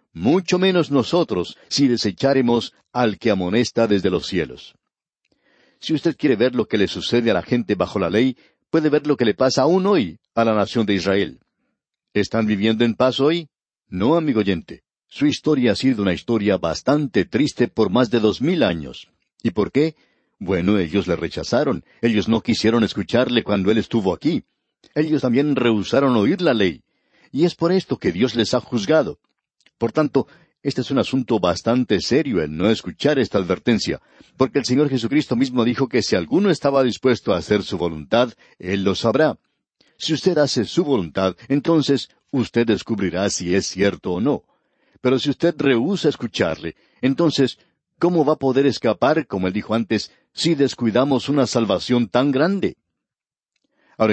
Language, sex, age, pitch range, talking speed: Spanish, male, 60-79, 105-140 Hz, 175 wpm